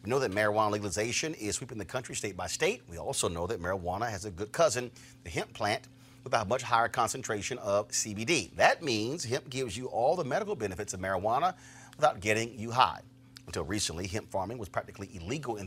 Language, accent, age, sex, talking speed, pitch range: English, American, 40-59, male, 205 wpm, 100-125 Hz